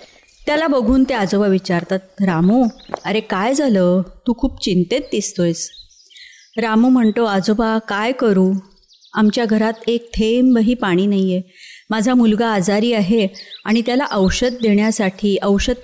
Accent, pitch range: native, 185-230 Hz